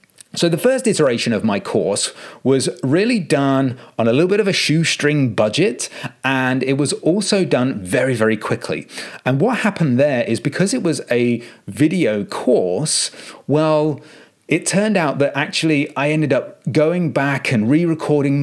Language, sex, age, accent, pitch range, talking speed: English, male, 30-49, British, 120-155 Hz, 165 wpm